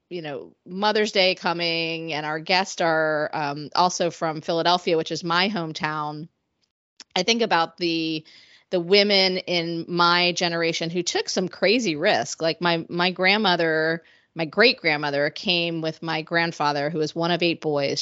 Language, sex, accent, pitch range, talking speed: English, female, American, 155-180 Hz, 160 wpm